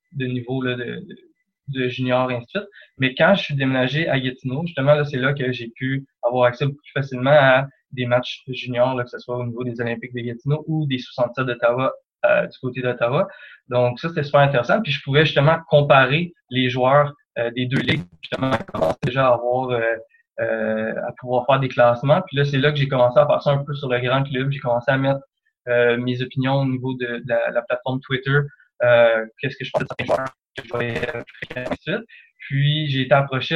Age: 20-39